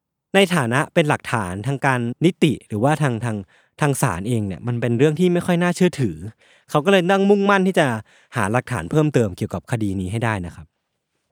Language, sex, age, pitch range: Thai, male, 20-39, 115-165 Hz